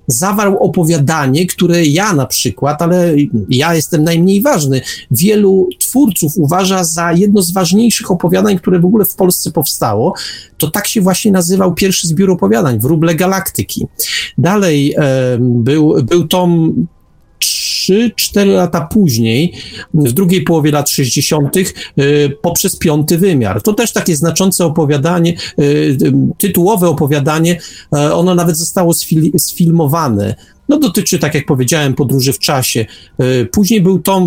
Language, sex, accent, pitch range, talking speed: Polish, male, native, 145-190 Hz, 130 wpm